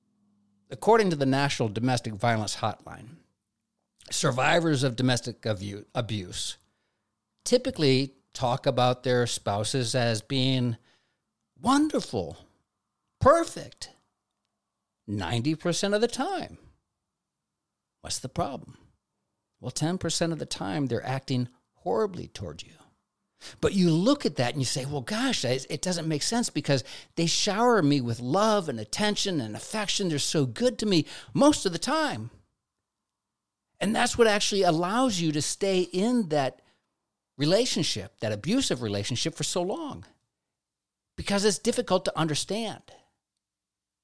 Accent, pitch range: American, 125-195 Hz